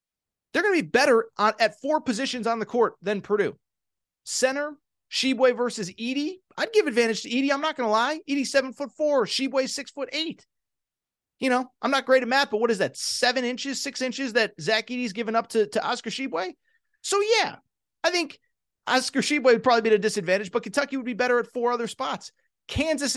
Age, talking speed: 30-49, 210 wpm